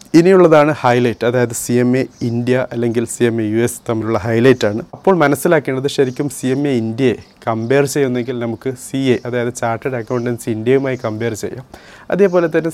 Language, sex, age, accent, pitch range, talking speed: Malayalam, male, 30-49, native, 115-135 Hz, 160 wpm